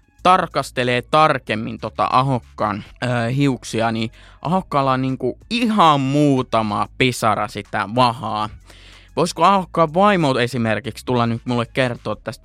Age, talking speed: 20-39, 110 wpm